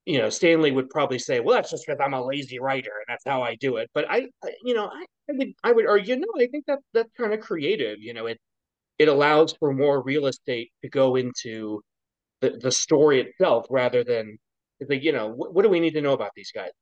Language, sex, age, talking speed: English, male, 30-49, 255 wpm